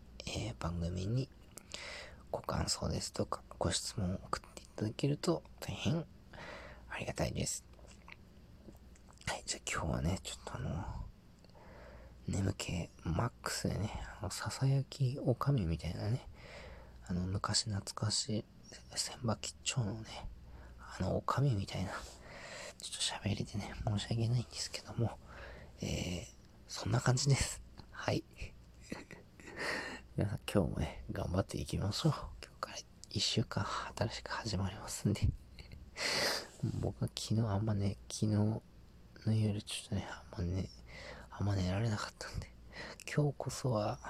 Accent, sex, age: native, male, 40-59